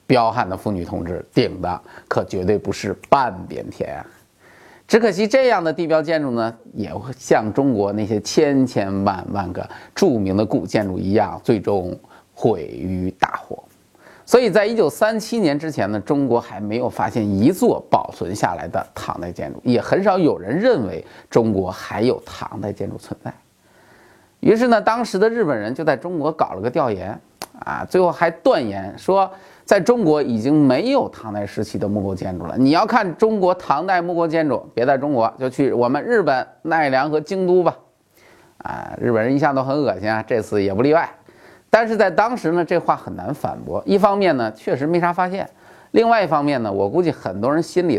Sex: male